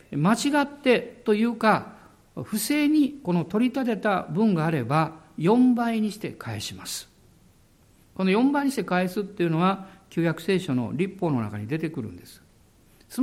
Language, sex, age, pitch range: Japanese, male, 60-79, 165-255 Hz